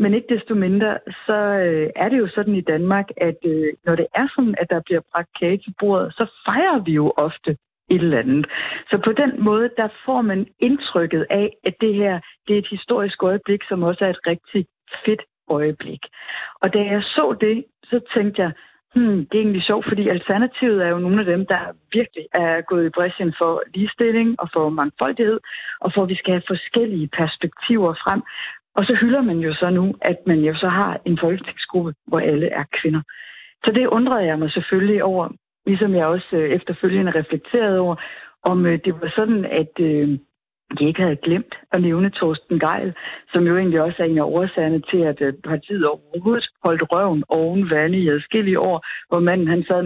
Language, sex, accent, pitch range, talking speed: Danish, female, native, 165-205 Hz, 195 wpm